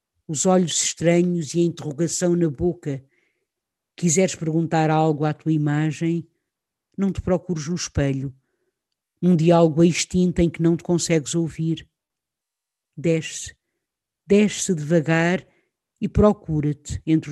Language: Portuguese